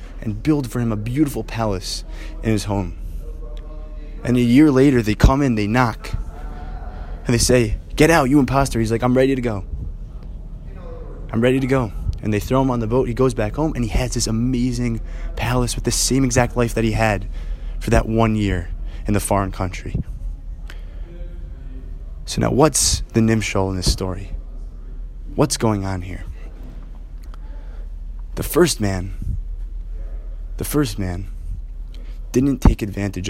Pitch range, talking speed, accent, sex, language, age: 80-115 Hz, 160 wpm, American, male, English, 20-39